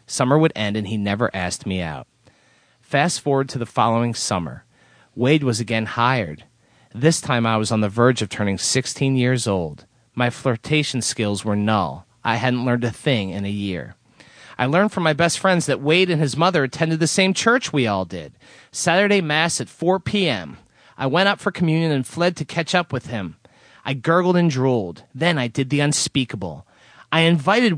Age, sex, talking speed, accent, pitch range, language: 30-49, male, 195 wpm, American, 110-160 Hz, English